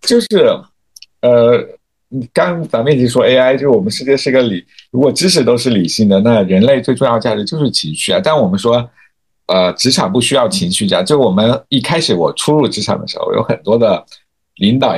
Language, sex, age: Chinese, male, 50-69